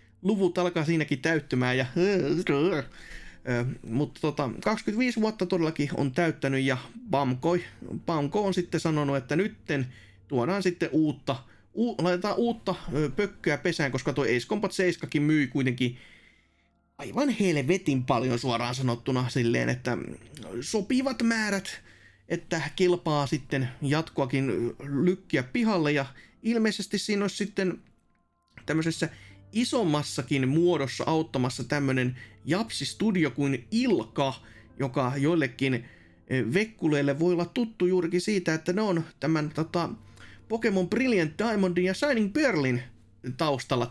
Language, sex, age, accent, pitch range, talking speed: Finnish, male, 30-49, native, 130-190 Hz, 110 wpm